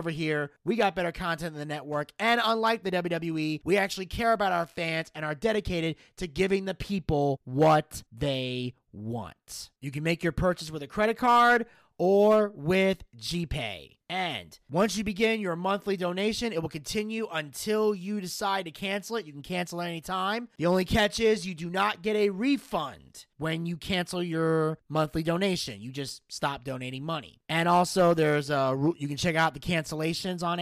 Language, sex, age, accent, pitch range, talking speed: English, male, 30-49, American, 150-190 Hz, 185 wpm